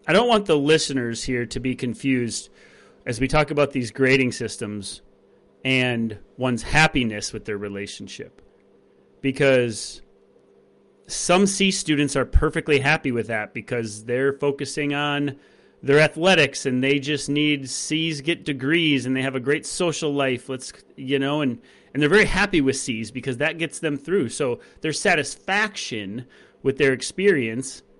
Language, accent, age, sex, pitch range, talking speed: English, American, 30-49, male, 125-155 Hz, 155 wpm